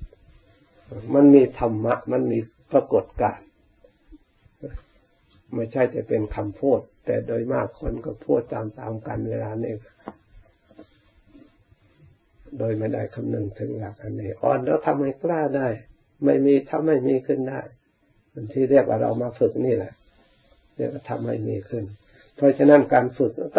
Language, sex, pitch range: Thai, male, 110-135 Hz